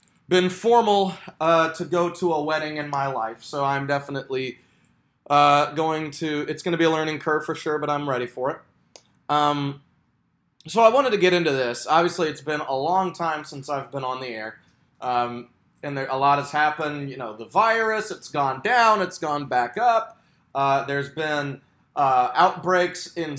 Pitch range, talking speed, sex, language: 140-180 Hz, 190 wpm, male, English